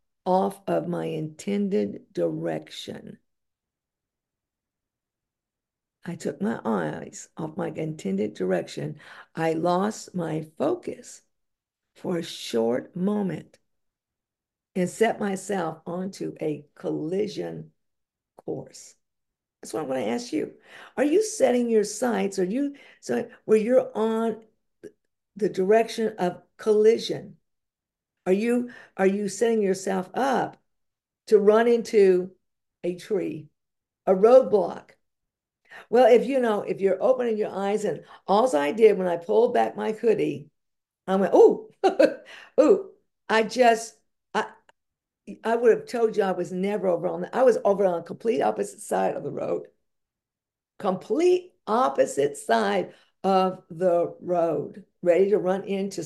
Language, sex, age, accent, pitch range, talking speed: English, female, 50-69, American, 180-230 Hz, 130 wpm